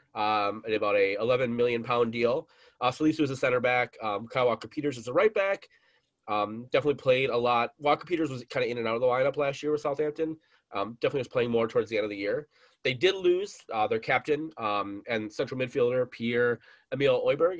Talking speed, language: 225 wpm, English